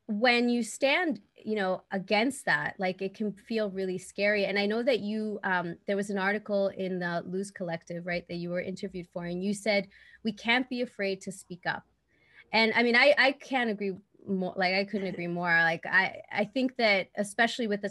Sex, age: female, 20-39